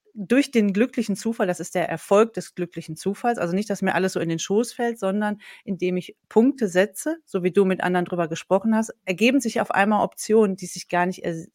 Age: 30-49